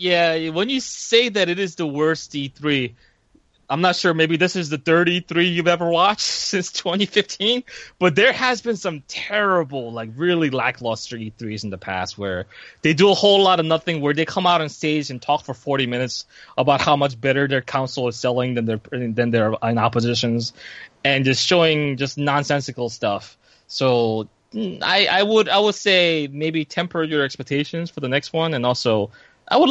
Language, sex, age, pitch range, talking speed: English, male, 20-39, 130-175 Hz, 190 wpm